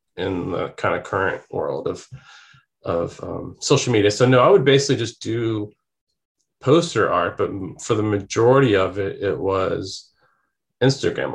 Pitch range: 95-115 Hz